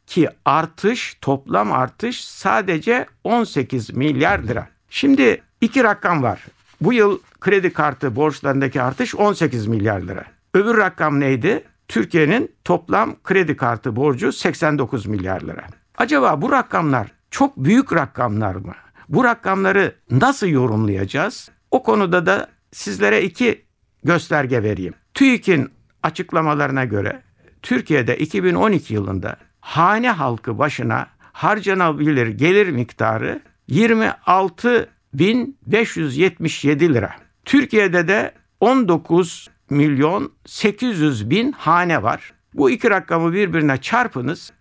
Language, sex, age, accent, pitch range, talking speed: Turkish, male, 60-79, native, 125-205 Hz, 100 wpm